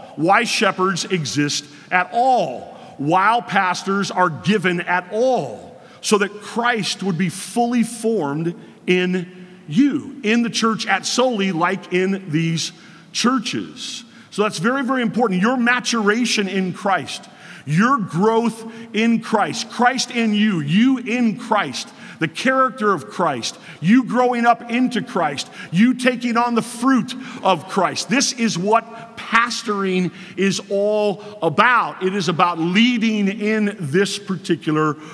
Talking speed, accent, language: 135 wpm, American, English